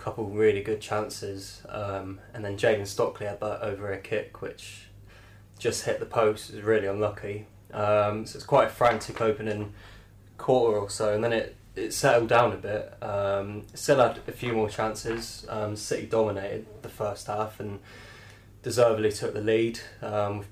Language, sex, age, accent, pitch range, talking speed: English, male, 20-39, British, 105-115 Hz, 180 wpm